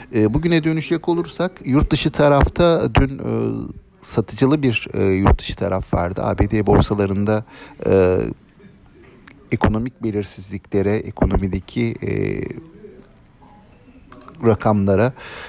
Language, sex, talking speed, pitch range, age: Turkish, male, 75 wpm, 100-130 Hz, 50-69